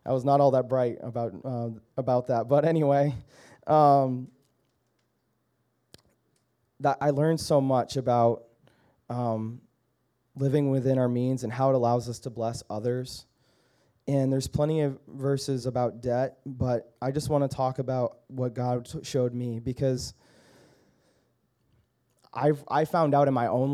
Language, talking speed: English, 150 wpm